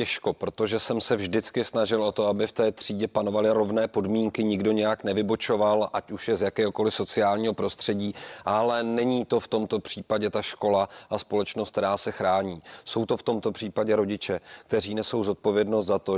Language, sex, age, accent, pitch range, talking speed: Czech, male, 30-49, native, 100-110 Hz, 180 wpm